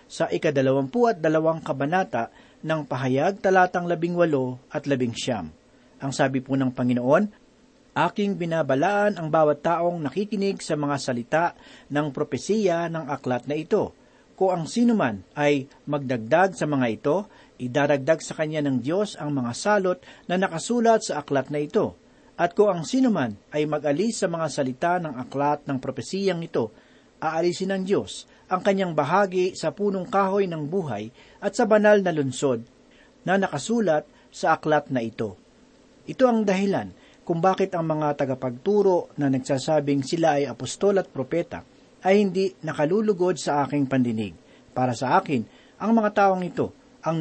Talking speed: 155 wpm